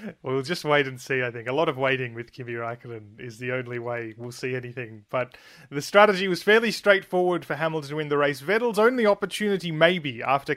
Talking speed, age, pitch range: 220 wpm, 30-49, 130-170 Hz